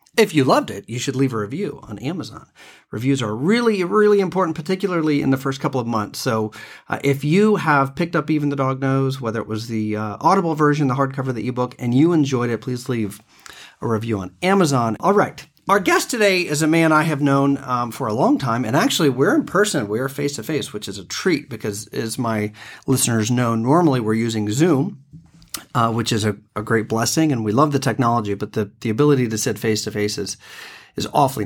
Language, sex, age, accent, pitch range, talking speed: English, male, 40-59, American, 110-150 Hz, 215 wpm